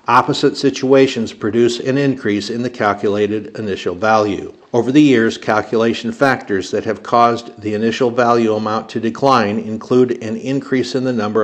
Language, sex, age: English, male, 60-79